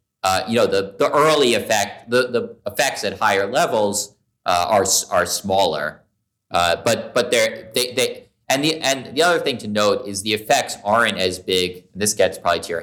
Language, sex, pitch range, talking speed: English, male, 100-120 Hz, 200 wpm